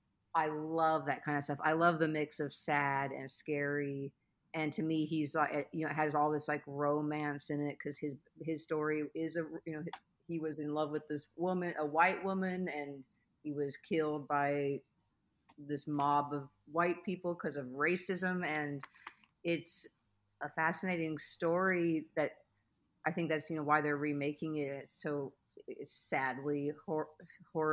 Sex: female